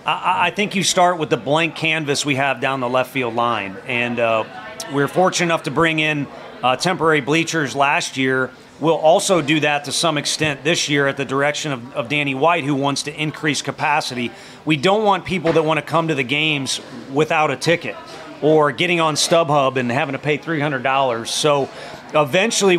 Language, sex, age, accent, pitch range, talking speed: English, male, 40-59, American, 135-165 Hz, 195 wpm